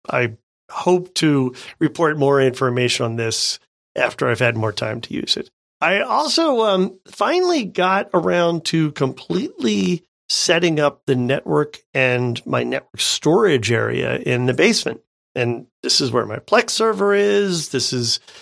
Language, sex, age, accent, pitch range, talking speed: English, male, 40-59, American, 130-170 Hz, 150 wpm